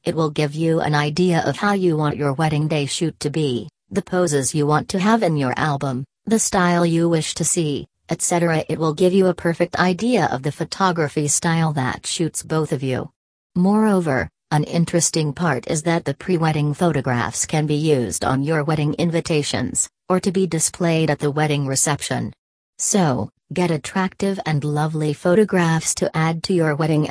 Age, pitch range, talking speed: 40-59, 150-175 Hz, 185 wpm